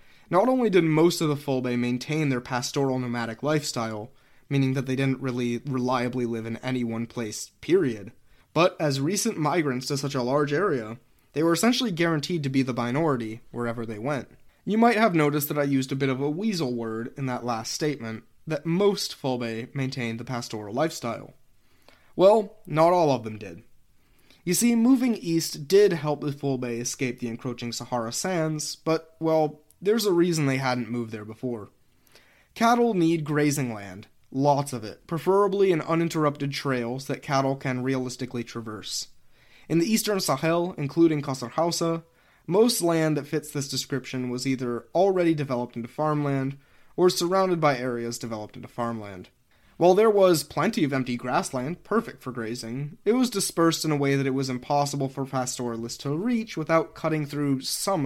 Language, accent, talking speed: English, American, 175 wpm